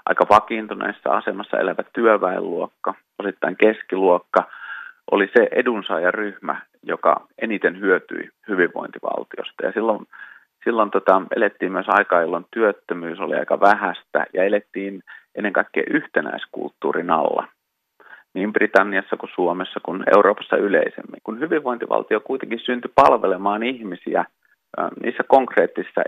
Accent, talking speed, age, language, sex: native, 110 wpm, 30-49, Finnish, male